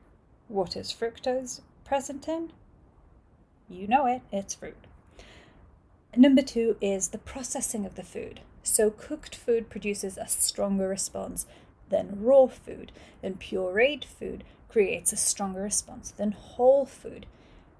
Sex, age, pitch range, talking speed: female, 30-49, 195-255 Hz, 130 wpm